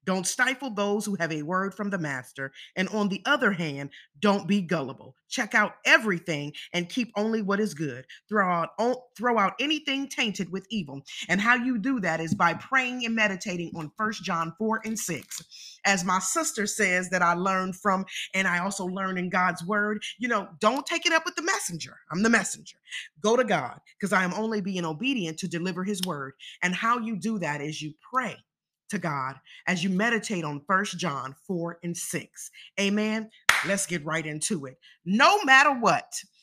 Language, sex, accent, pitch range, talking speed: English, female, American, 175-225 Hz, 195 wpm